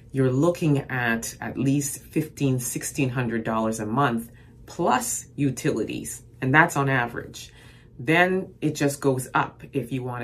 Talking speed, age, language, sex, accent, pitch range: 135 wpm, 30-49, English, female, American, 125-160 Hz